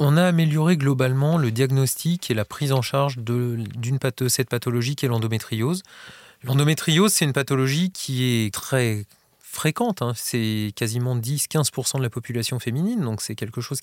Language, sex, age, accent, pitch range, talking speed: French, male, 30-49, French, 120-160 Hz, 170 wpm